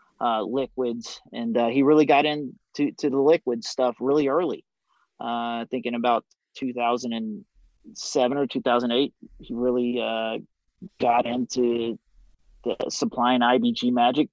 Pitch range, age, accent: 120-140 Hz, 30-49, American